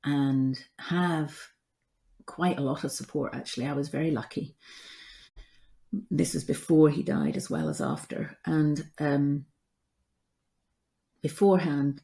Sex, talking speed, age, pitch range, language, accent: female, 120 wpm, 40-59, 140-185 Hz, English, British